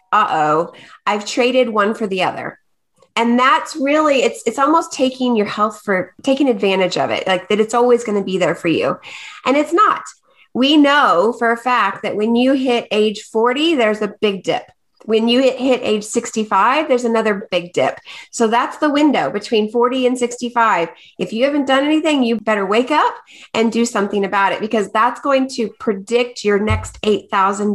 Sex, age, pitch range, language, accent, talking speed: female, 30-49, 205-260 Hz, English, American, 190 wpm